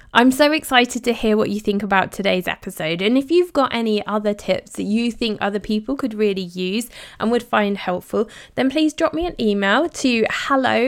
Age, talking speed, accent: 20-39, 210 wpm, British